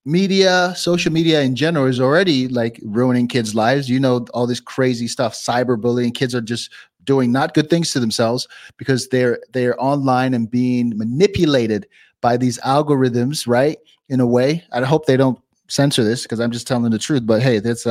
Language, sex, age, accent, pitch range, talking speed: English, male, 30-49, American, 120-145 Hz, 190 wpm